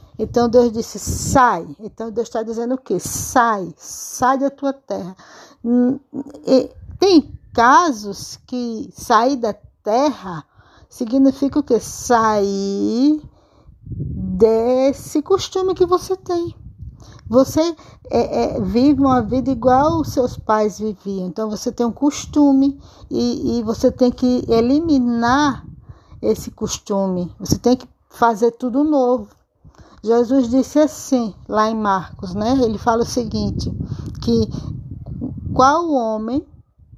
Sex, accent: female, Brazilian